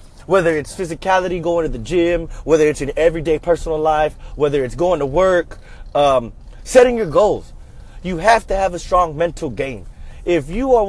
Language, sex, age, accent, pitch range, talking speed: English, male, 30-49, American, 135-185 Hz, 180 wpm